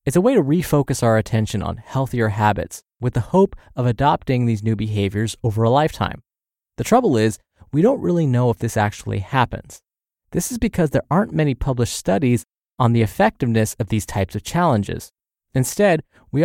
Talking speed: 180 wpm